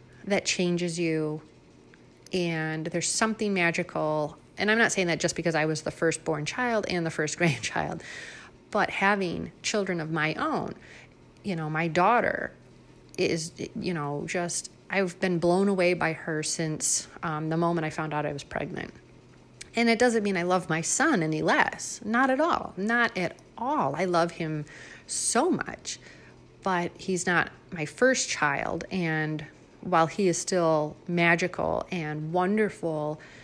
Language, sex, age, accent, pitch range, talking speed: English, female, 30-49, American, 160-200 Hz, 160 wpm